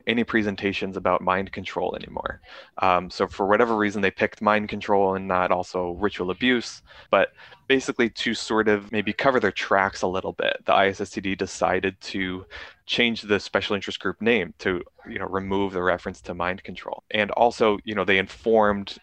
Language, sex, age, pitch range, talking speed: English, male, 20-39, 95-105 Hz, 180 wpm